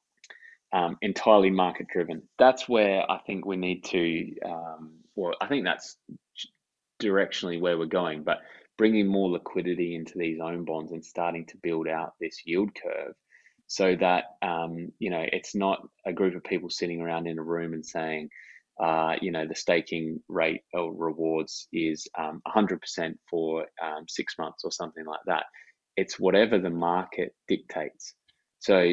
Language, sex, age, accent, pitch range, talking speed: English, male, 20-39, Australian, 80-95 Hz, 170 wpm